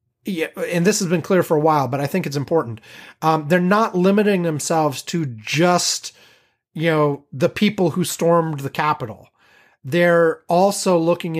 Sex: male